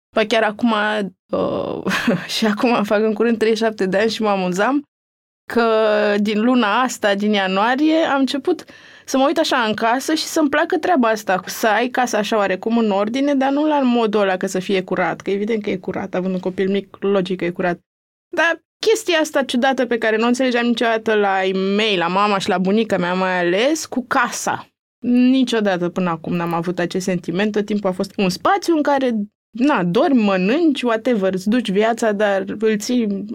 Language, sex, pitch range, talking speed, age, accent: Romanian, female, 195-245 Hz, 195 wpm, 20-39, native